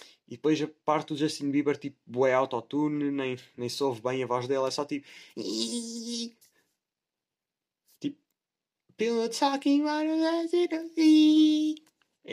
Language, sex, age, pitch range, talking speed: Portuguese, male, 20-39, 135-170 Hz, 120 wpm